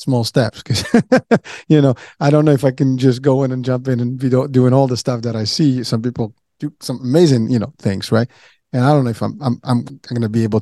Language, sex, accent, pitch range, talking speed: English, male, American, 110-135 Hz, 265 wpm